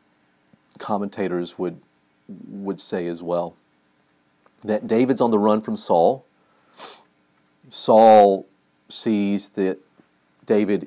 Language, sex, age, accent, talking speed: English, male, 40-59, American, 95 wpm